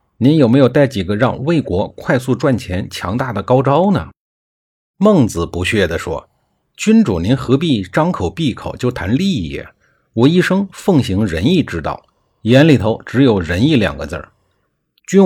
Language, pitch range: Chinese, 95-150 Hz